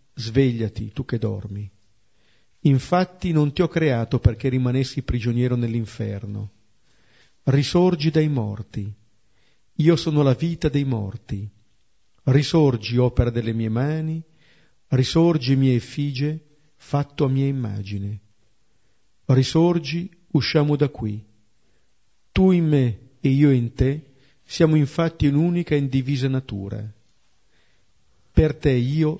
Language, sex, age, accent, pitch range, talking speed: Italian, male, 50-69, native, 110-145 Hz, 110 wpm